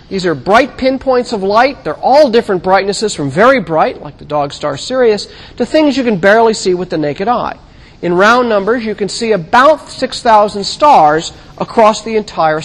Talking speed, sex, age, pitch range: 190 wpm, male, 40-59, 175-255 Hz